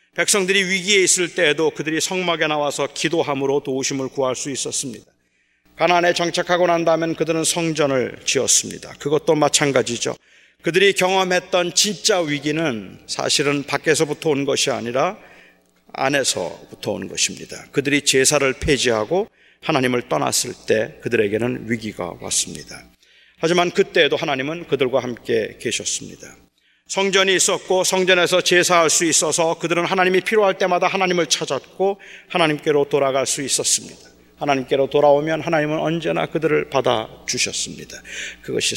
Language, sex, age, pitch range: Korean, male, 40-59, 125-175 Hz